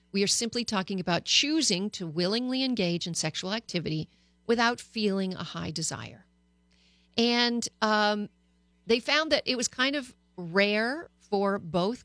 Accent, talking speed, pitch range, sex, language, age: American, 145 wpm, 175-250 Hz, female, English, 40-59